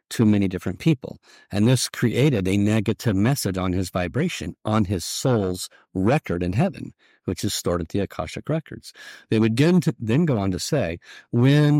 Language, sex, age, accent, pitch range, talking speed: English, male, 50-69, American, 100-125 Hz, 175 wpm